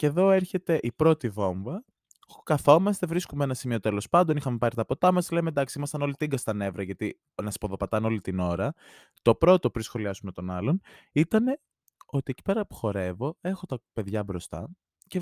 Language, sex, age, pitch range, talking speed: English, male, 20-39, 95-140 Hz, 185 wpm